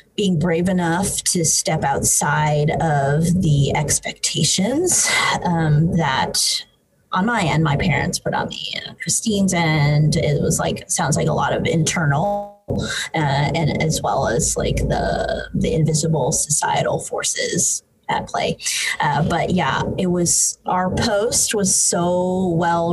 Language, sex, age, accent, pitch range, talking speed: English, female, 20-39, American, 155-190 Hz, 140 wpm